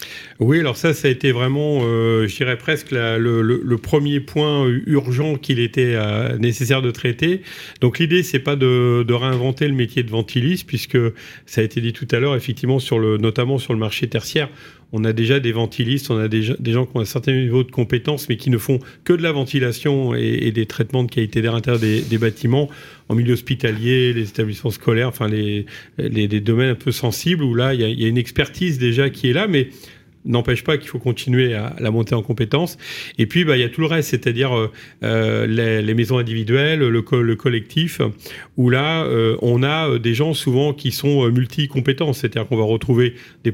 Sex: male